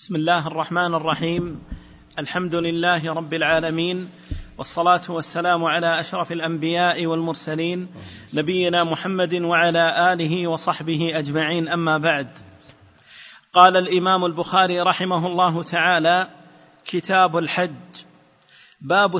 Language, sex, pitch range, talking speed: Arabic, male, 170-190 Hz, 95 wpm